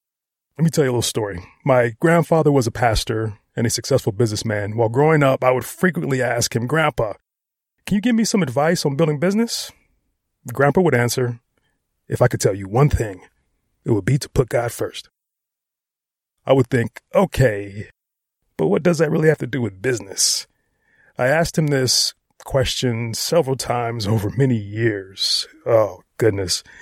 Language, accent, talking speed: English, American, 170 wpm